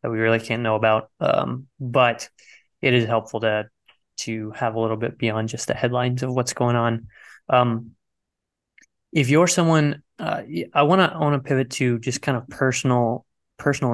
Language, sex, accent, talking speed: English, male, American, 180 wpm